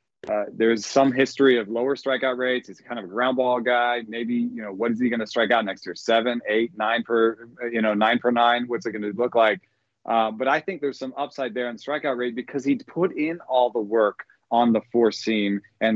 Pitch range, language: 110-130 Hz, English